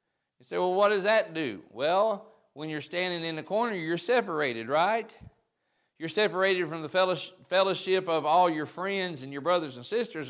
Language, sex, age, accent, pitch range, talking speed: English, male, 40-59, American, 135-170 Hz, 180 wpm